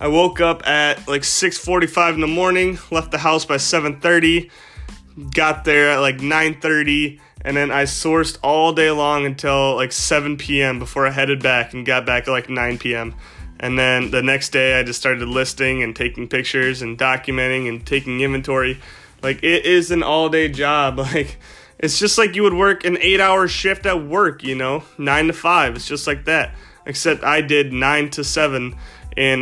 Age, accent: 20-39, American